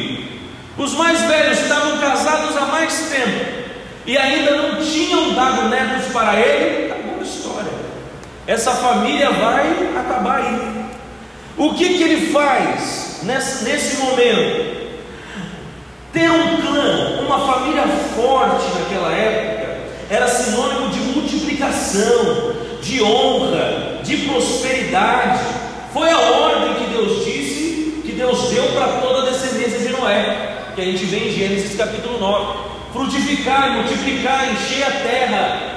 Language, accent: Portuguese, Brazilian